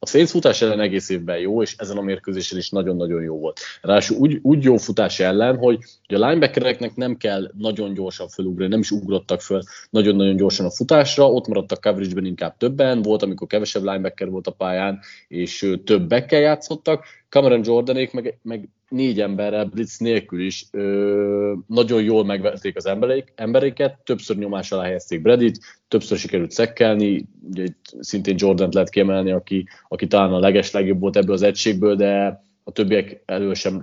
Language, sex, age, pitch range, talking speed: Hungarian, male, 30-49, 95-115 Hz, 165 wpm